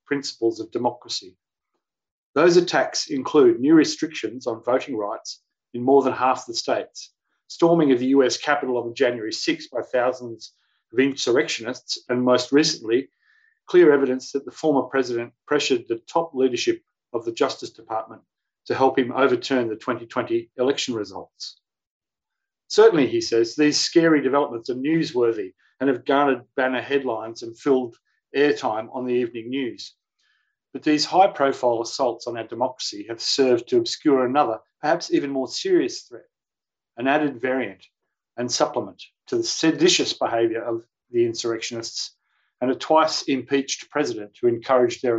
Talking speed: 150 wpm